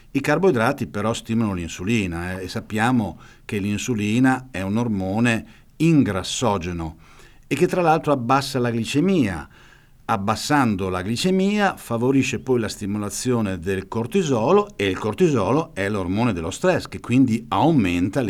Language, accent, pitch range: Italian, native, 95-125 Hz